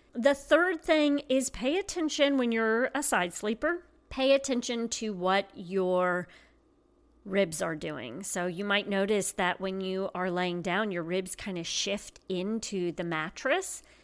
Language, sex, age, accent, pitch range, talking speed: English, female, 40-59, American, 190-275 Hz, 160 wpm